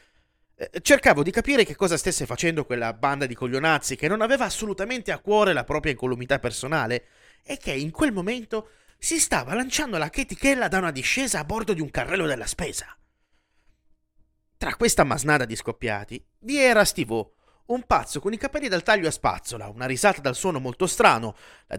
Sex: male